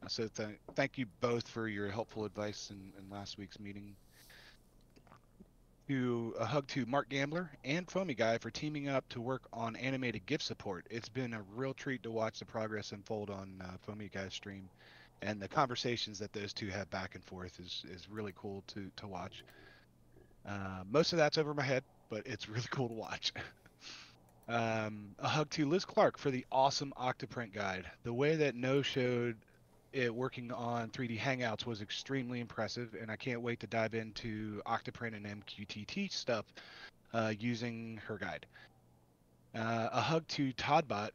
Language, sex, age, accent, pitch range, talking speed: English, male, 30-49, American, 105-130 Hz, 170 wpm